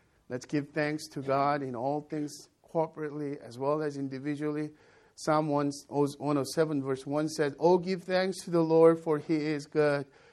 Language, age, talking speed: English, 50-69, 165 wpm